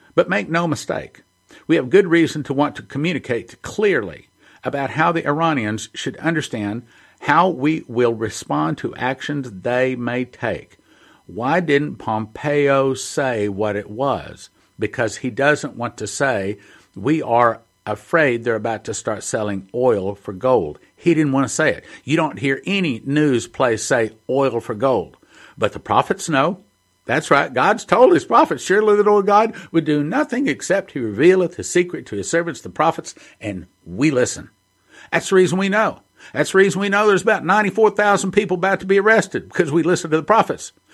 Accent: American